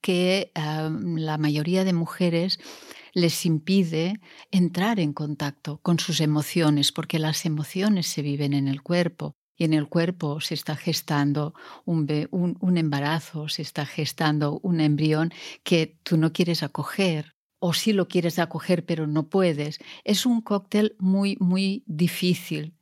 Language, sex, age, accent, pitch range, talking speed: Spanish, female, 40-59, Spanish, 160-190 Hz, 150 wpm